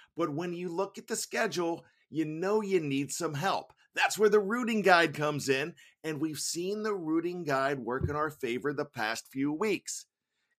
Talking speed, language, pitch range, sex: 200 wpm, English, 150-200 Hz, male